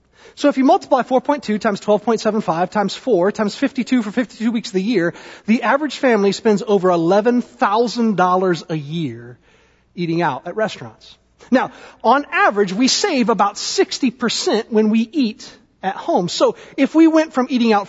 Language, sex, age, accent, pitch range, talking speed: English, male, 30-49, American, 180-245 Hz, 160 wpm